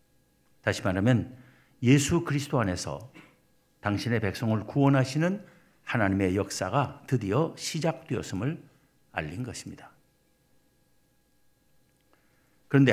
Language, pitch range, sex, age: Korean, 115-150 Hz, male, 60-79